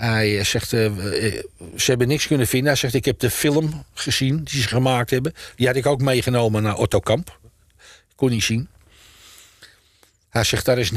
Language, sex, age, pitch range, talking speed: Dutch, male, 60-79, 105-140 Hz, 180 wpm